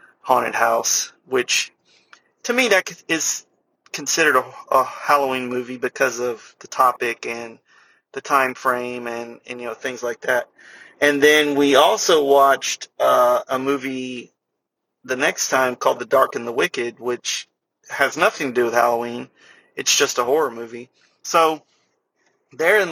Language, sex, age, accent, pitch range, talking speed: English, male, 30-49, American, 120-140 Hz, 150 wpm